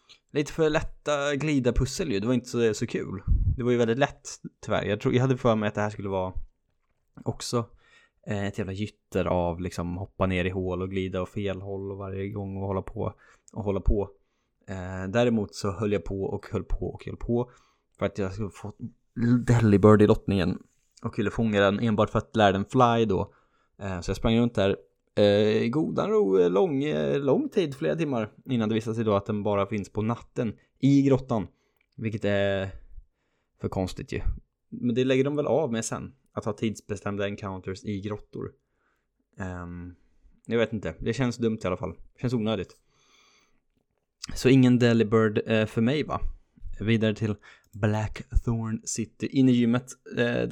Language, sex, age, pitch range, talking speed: Swedish, male, 20-39, 95-120 Hz, 190 wpm